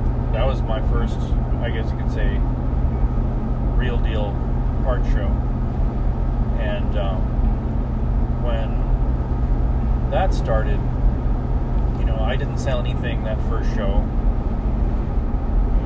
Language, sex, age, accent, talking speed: English, male, 30-49, American, 105 wpm